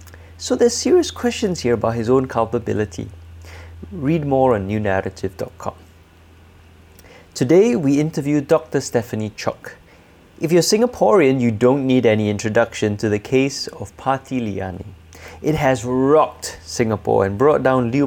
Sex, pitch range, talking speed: male, 95-140 Hz, 135 wpm